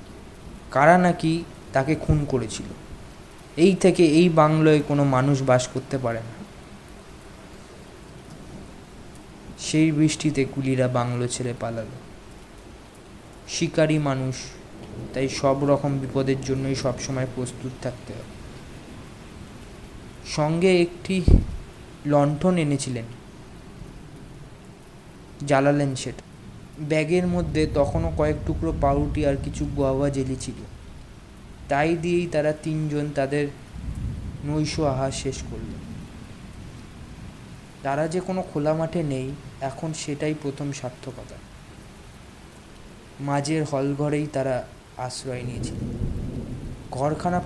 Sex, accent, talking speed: male, native, 90 wpm